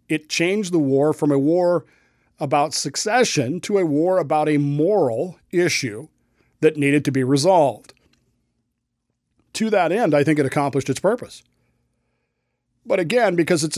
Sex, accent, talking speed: male, American, 150 wpm